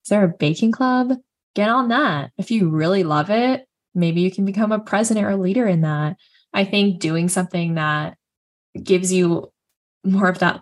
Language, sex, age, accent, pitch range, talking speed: English, female, 10-29, American, 165-205 Hz, 185 wpm